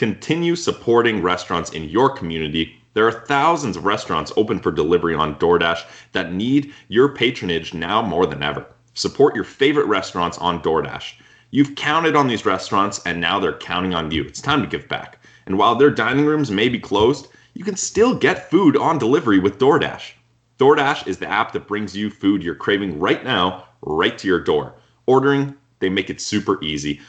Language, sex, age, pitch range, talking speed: English, male, 30-49, 90-150 Hz, 190 wpm